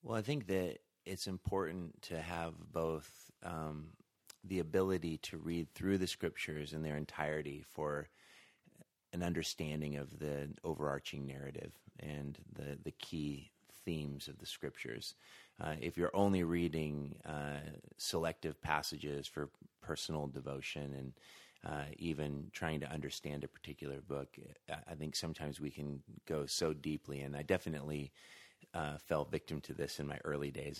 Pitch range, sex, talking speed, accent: 70-80 Hz, male, 145 wpm, American